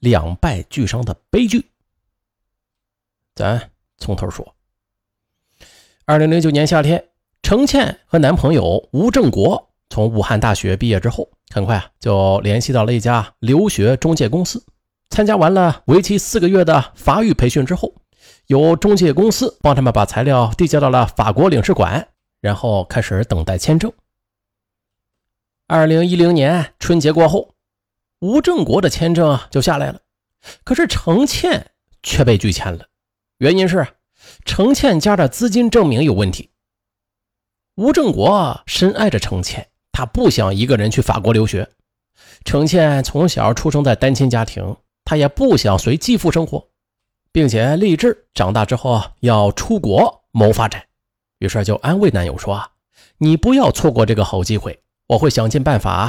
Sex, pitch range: male, 105-165 Hz